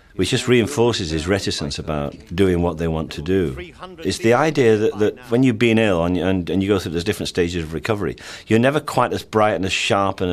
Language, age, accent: English, 40-59, British